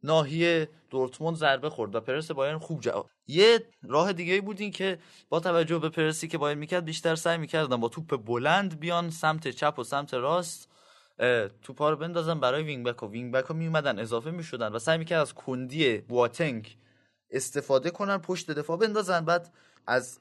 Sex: male